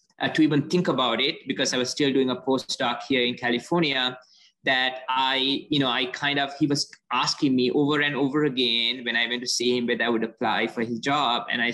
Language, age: English, 20-39